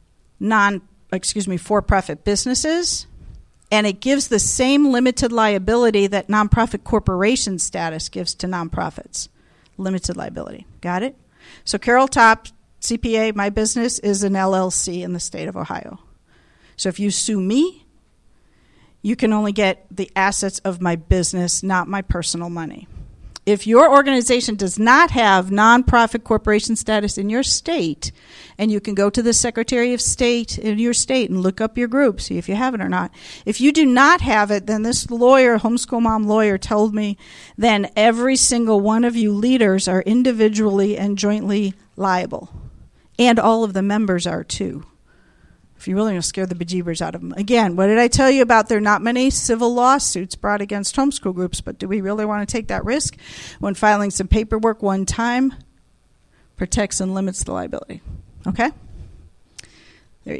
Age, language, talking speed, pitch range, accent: 50-69, English, 175 wpm, 195-235 Hz, American